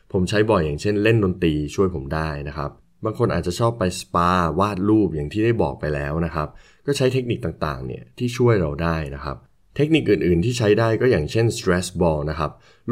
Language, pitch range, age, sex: Thai, 80-110 Hz, 20-39, male